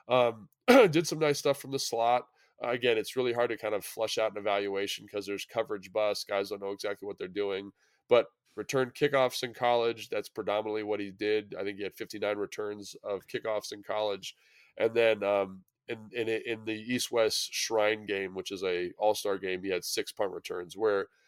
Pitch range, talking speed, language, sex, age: 105-150 Hz, 205 wpm, English, male, 20-39